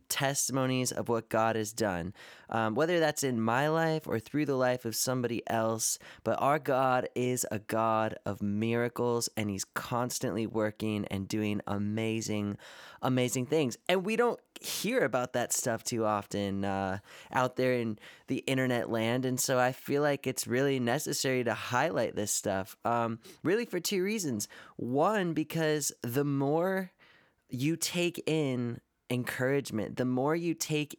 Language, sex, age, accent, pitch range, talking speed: English, male, 20-39, American, 115-150 Hz, 155 wpm